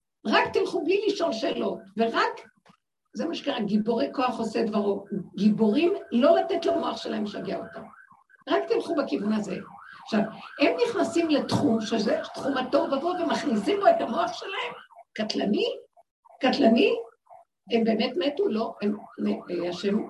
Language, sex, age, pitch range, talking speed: Hebrew, female, 50-69, 225-330 Hz, 135 wpm